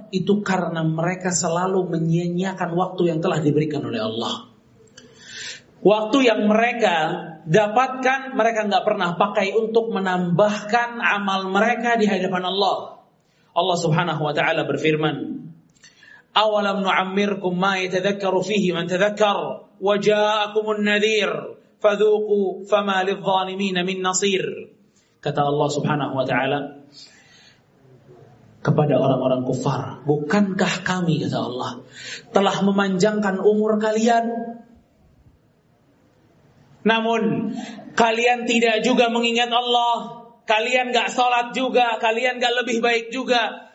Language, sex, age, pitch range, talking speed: Indonesian, male, 30-49, 155-230 Hz, 105 wpm